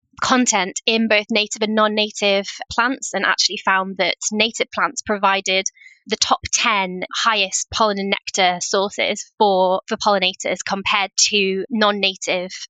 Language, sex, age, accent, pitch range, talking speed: English, female, 20-39, British, 195-235 Hz, 130 wpm